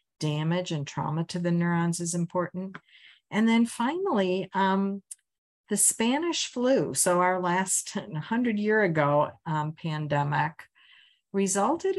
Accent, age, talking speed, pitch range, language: American, 50-69, 120 wpm, 150-195 Hz, English